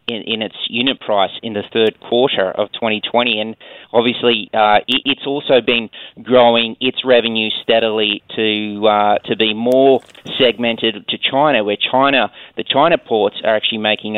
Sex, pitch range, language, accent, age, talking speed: male, 105-120 Hz, English, Australian, 30-49, 160 wpm